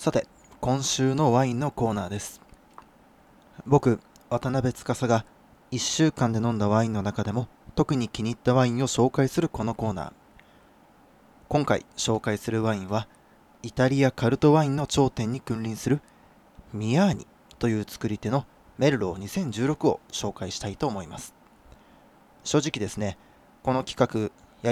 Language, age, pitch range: Japanese, 20-39, 110-140 Hz